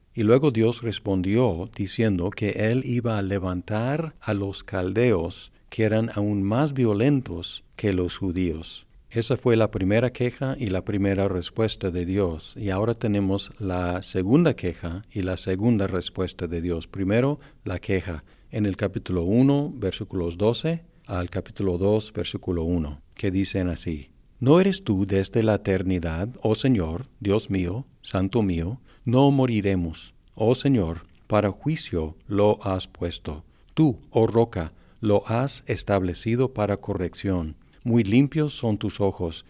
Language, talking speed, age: Spanish, 145 wpm, 50-69